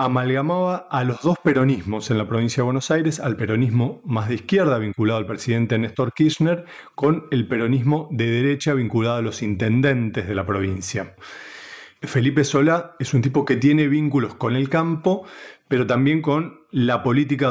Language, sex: Spanish, male